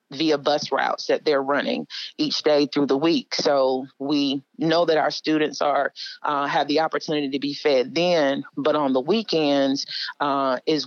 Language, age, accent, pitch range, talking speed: English, 40-59, American, 140-160 Hz, 175 wpm